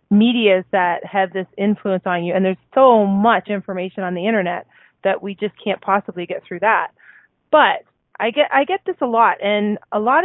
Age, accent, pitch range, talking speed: 20-39, American, 190-230 Hz, 200 wpm